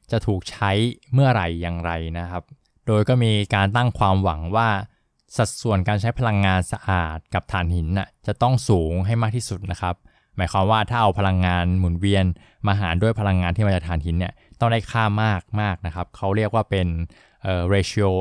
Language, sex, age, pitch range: Thai, male, 20-39, 90-110 Hz